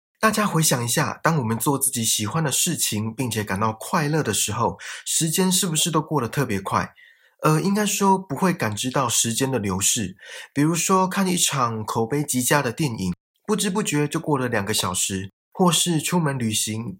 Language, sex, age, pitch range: Chinese, male, 20-39, 110-165 Hz